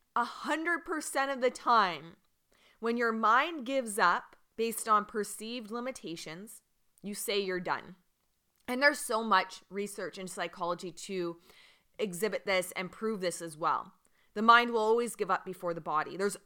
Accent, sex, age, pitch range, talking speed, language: American, female, 20-39, 175-215 Hz, 150 wpm, English